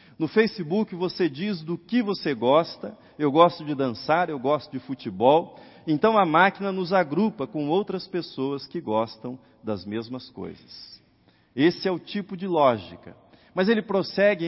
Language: Portuguese